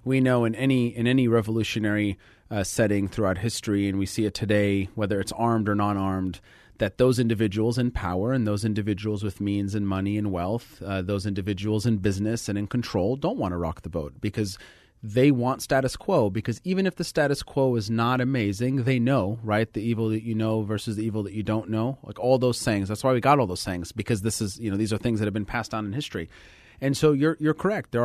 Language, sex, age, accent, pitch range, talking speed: English, male, 30-49, American, 100-125 Hz, 235 wpm